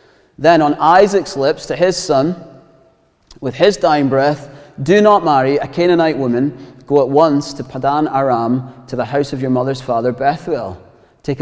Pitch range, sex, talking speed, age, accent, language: 120-150 Hz, male, 170 wpm, 30-49, British, English